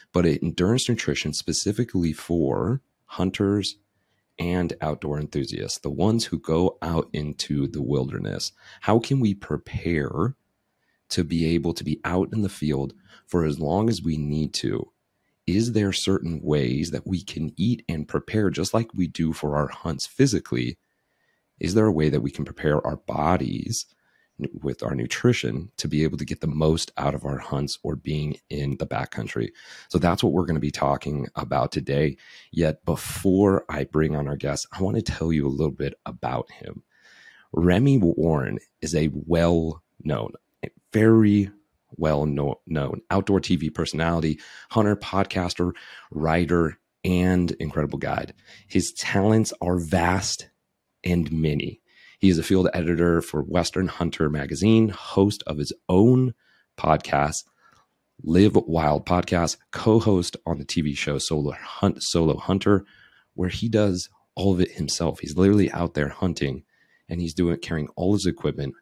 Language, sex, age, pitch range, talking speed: English, male, 30-49, 75-95 Hz, 160 wpm